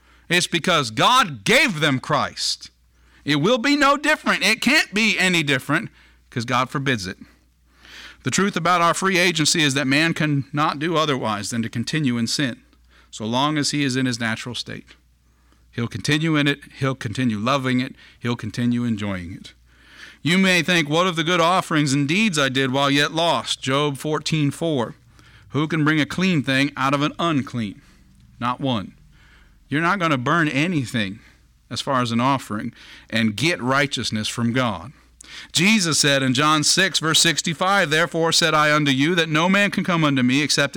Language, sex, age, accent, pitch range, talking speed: English, male, 50-69, American, 120-170 Hz, 180 wpm